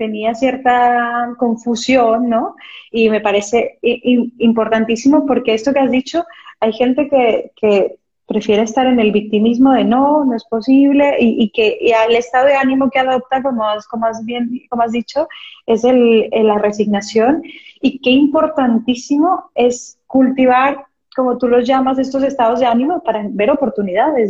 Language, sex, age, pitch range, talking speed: Spanish, female, 30-49, 225-265 Hz, 160 wpm